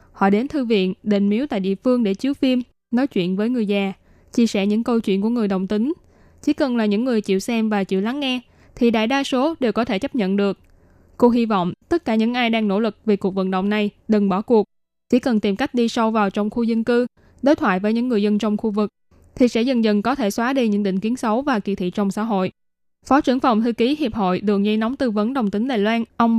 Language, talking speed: Vietnamese, 275 wpm